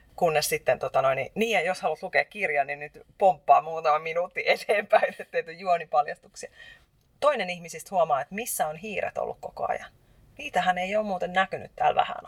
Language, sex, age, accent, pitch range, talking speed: Finnish, female, 30-49, native, 165-260 Hz, 170 wpm